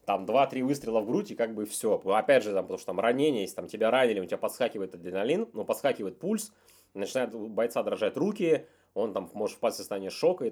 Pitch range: 95-155 Hz